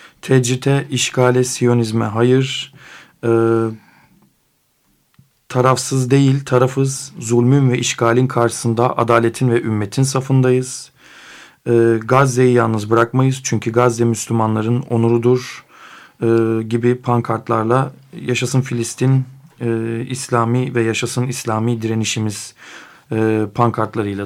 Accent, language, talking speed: native, Turkish, 90 wpm